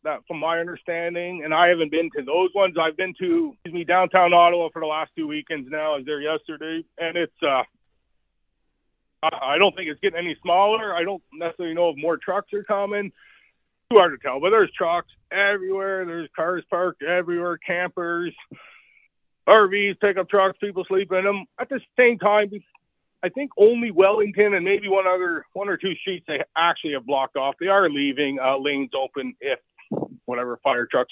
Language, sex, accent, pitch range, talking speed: English, male, American, 145-195 Hz, 190 wpm